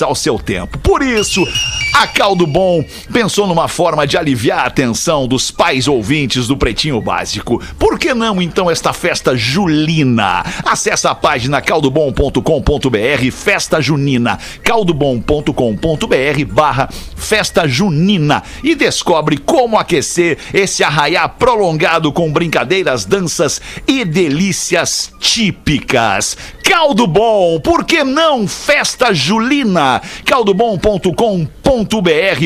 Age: 60-79